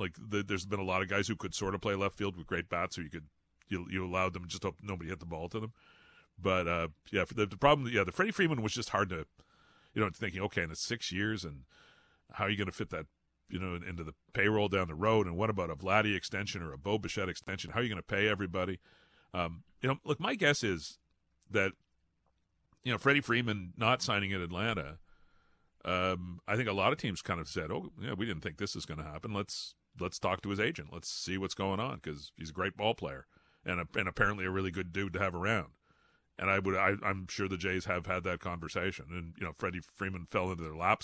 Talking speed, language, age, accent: 255 wpm, English, 40-59, American